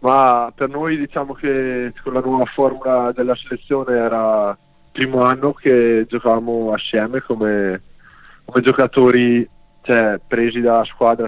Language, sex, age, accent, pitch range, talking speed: Italian, male, 20-39, native, 115-130 Hz, 135 wpm